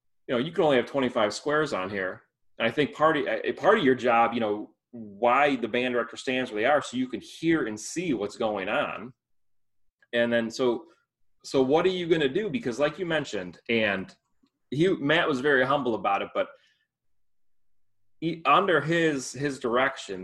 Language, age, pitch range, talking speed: English, 30-49, 100-130 Hz, 200 wpm